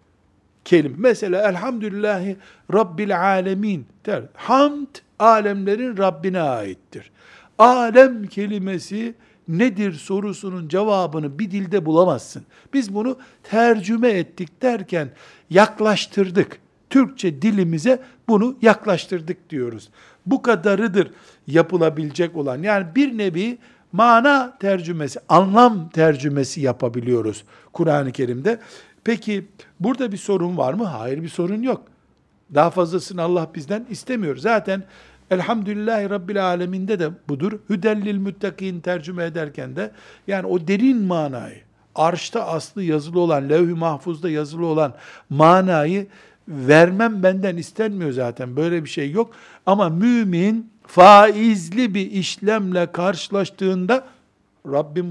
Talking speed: 105 wpm